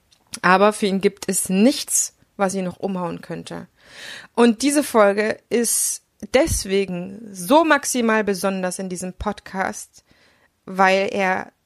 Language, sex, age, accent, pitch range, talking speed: German, female, 20-39, German, 200-245 Hz, 125 wpm